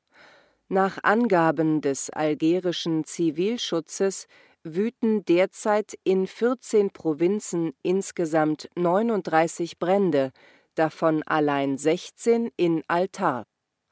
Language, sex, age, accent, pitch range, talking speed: German, female, 40-59, German, 155-195 Hz, 80 wpm